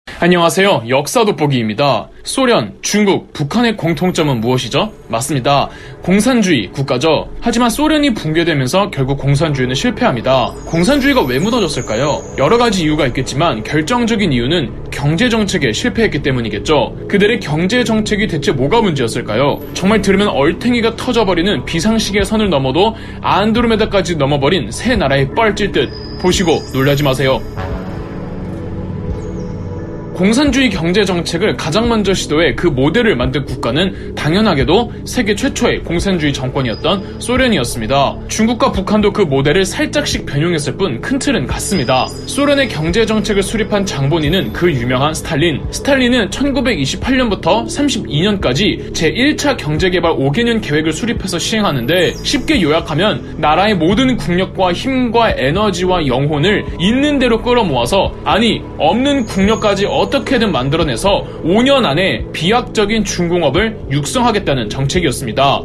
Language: Korean